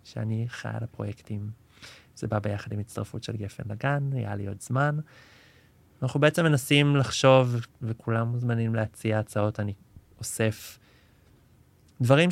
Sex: male